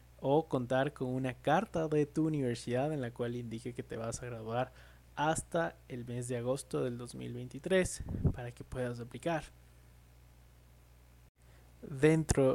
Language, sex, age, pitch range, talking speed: Spanish, male, 20-39, 120-155 Hz, 140 wpm